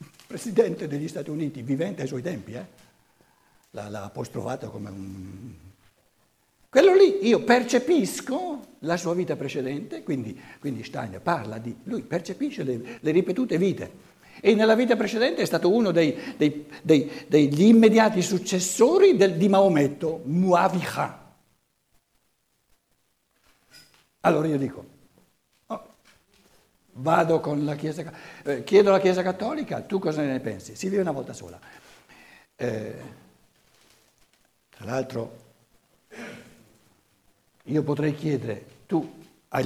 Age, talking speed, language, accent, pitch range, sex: 60-79, 110 wpm, Italian, native, 130-205 Hz, male